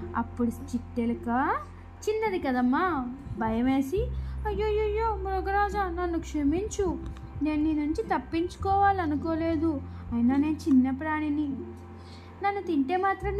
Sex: female